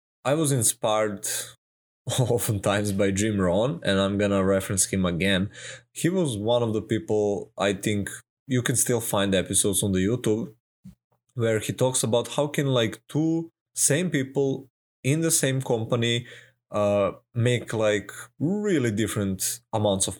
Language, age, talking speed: English, 20-39, 150 wpm